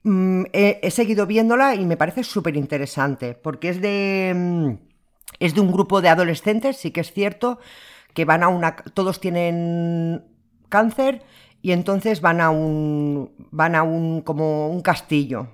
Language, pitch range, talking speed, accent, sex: Spanish, 150-185 Hz, 150 wpm, Spanish, female